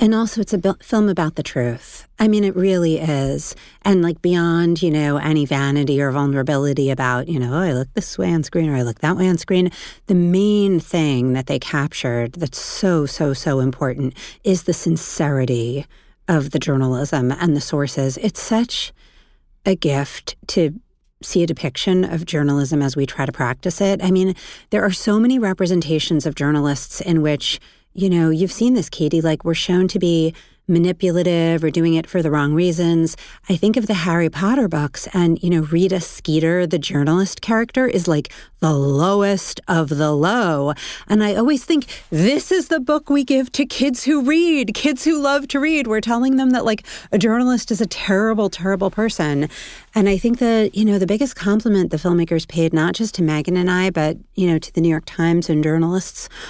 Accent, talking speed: American, 195 wpm